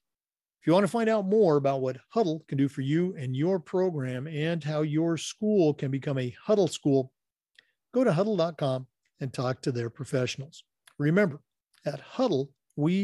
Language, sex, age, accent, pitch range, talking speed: English, male, 50-69, American, 135-180 Hz, 175 wpm